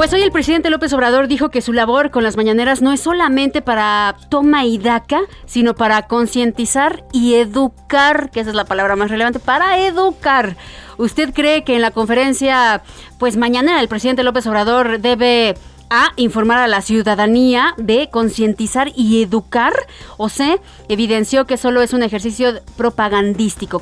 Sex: female